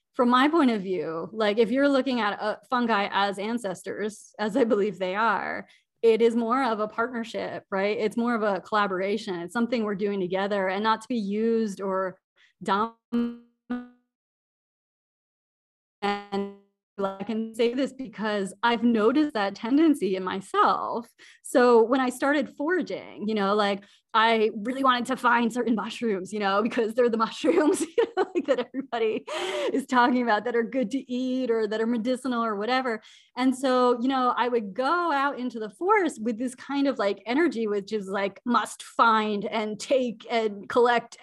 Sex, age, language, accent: female, 20-39, English, American